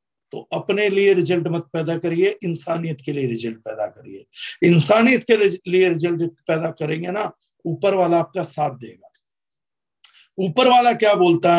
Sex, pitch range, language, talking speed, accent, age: male, 155-195 Hz, Hindi, 150 wpm, native, 50-69